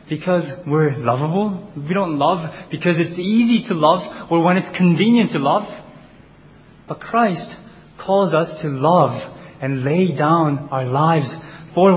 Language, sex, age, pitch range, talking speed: English, male, 20-39, 125-175 Hz, 145 wpm